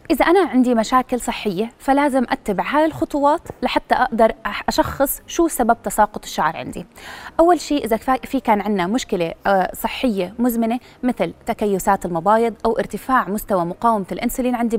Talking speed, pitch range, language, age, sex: 140 wpm, 200-255 Hz, Arabic, 20-39, female